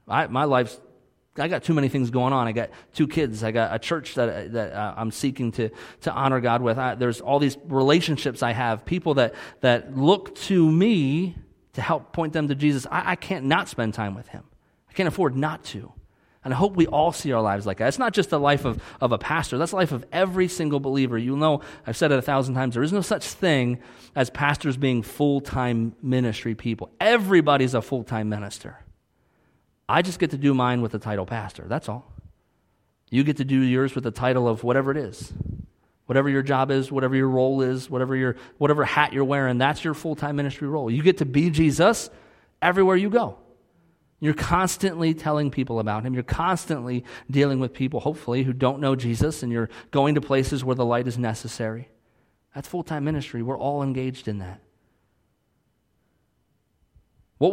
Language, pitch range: English, 120-150 Hz